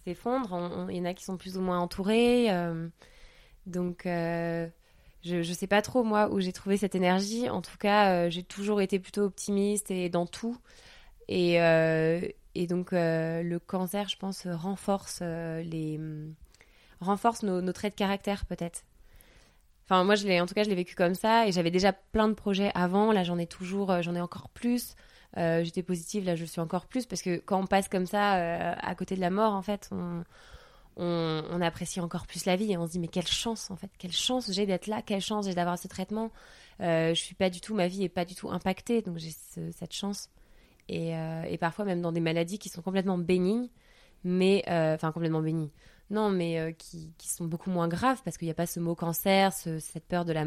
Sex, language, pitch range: female, French, 170-200 Hz